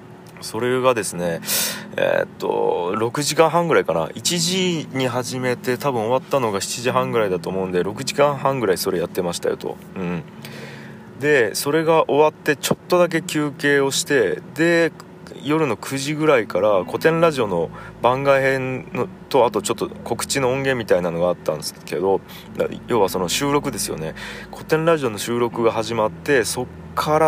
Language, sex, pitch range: Japanese, male, 120-165 Hz